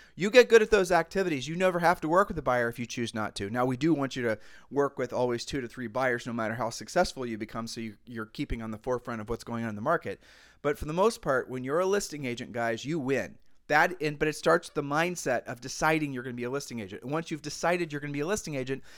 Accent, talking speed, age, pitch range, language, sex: American, 280 wpm, 40-59, 130-170 Hz, English, male